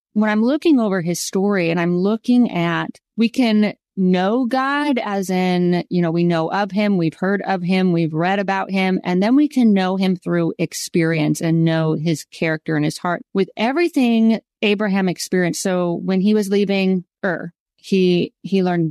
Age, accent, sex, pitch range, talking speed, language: 30-49, American, female, 175-220 Hz, 185 wpm, English